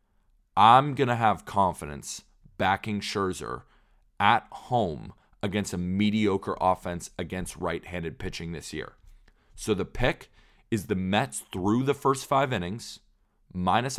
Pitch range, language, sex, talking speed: 90-105 Hz, English, male, 130 wpm